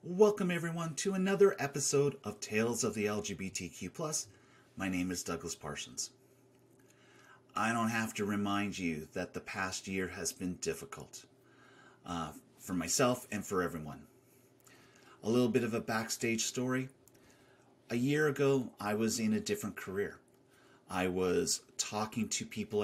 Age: 30-49